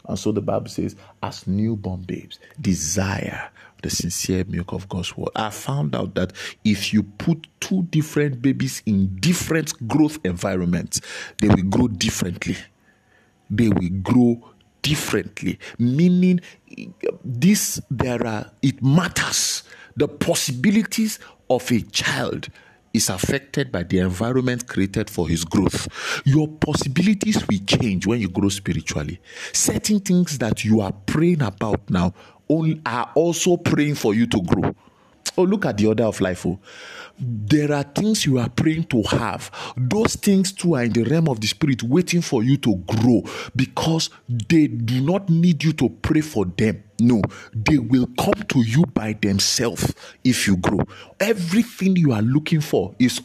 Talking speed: 155 wpm